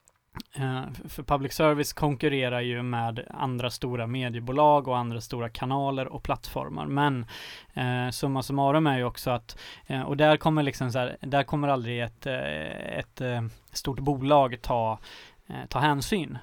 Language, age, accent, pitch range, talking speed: English, 20-39, Swedish, 120-140 Hz, 160 wpm